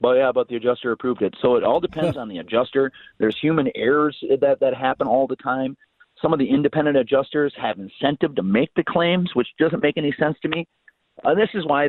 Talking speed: 230 wpm